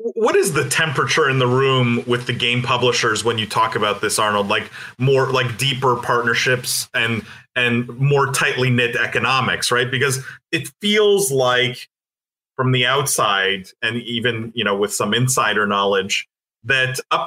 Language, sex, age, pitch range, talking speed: English, male, 30-49, 120-140 Hz, 160 wpm